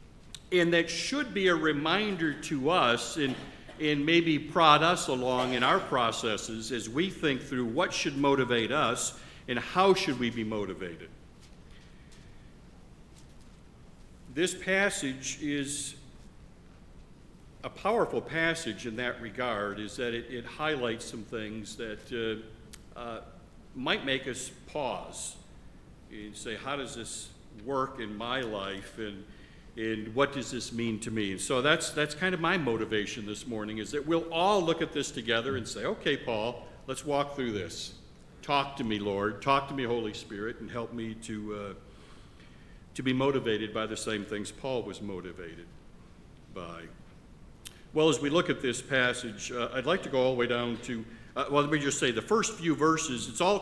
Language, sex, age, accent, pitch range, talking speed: English, male, 60-79, American, 110-150 Hz, 165 wpm